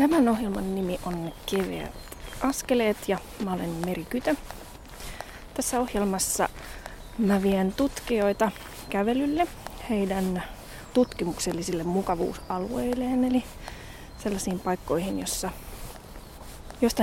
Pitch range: 185-230 Hz